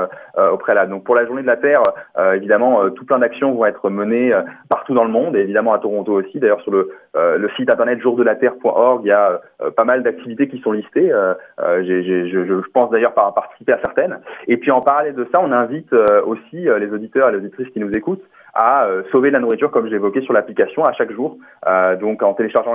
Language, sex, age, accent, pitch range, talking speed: French, male, 20-39, French, 105-150 Hz, 245 wpm